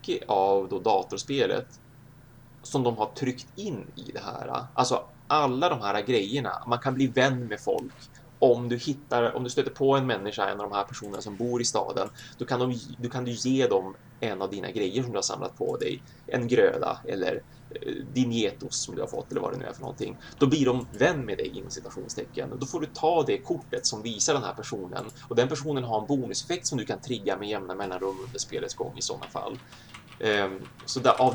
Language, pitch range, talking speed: Swedish, 115-135 Hz, 215 wpm